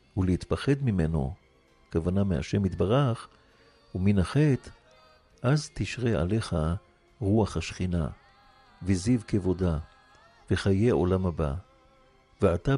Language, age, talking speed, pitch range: Hebrew, 50-69, 80 wpm, 90-115 Hz